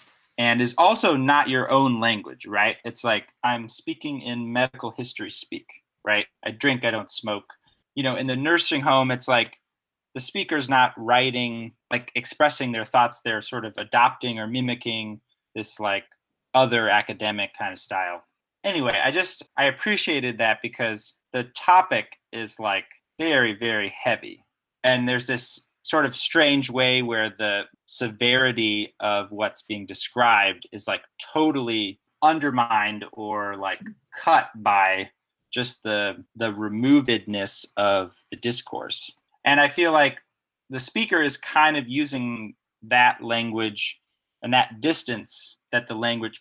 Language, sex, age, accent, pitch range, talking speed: English, male, 30-49, American, 110-130 Hz, 145 wpm